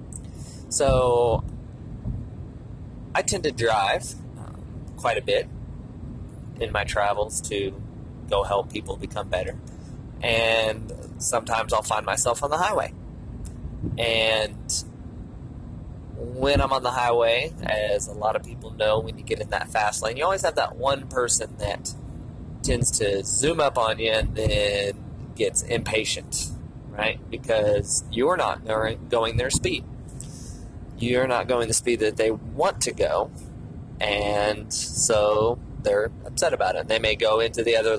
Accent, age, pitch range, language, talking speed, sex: American, 30-49, 105-125 Hz, English, 145 wpm, male